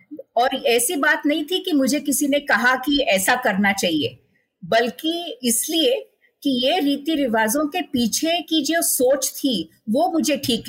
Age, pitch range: 50-69, 215-285 Hz